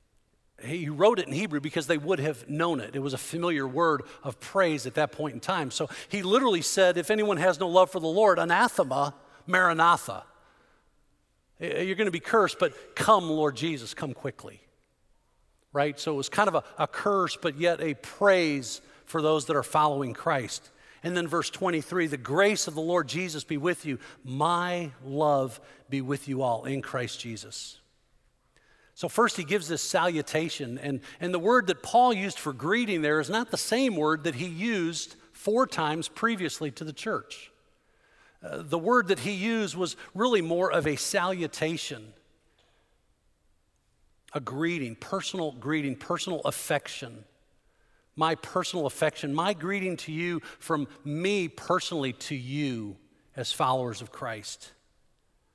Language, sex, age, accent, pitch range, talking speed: English, male, 50-69, American, 140-180 Hz, 165 wpm